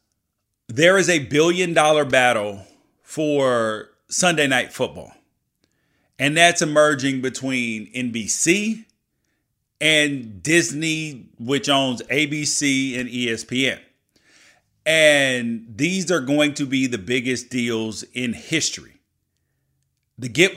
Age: 40-59